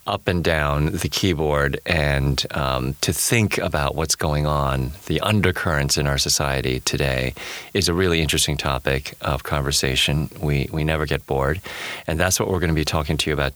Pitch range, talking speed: 80-100 Hz, 180 wpm